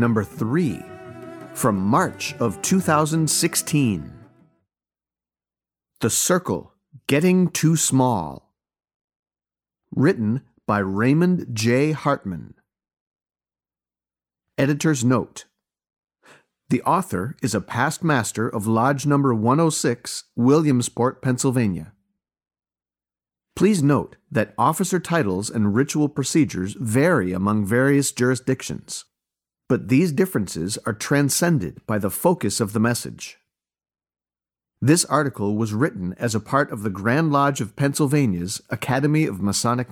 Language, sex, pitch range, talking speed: English, male, 90-145 Hz, 105 wpm